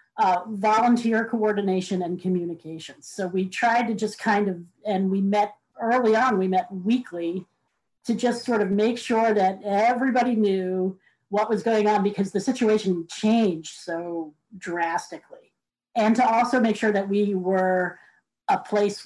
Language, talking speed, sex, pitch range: English, 155 wpm, female, 180-215 Hz